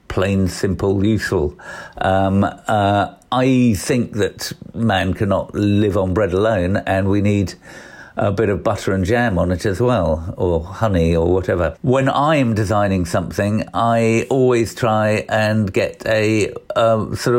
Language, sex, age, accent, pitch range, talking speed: English, male, 50-69, British, 95-120 Hz, 150 wpm